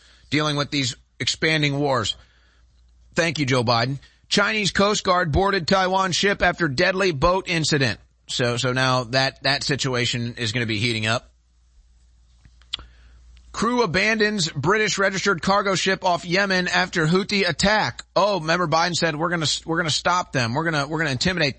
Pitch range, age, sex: 120-180 Hz, 30-49, male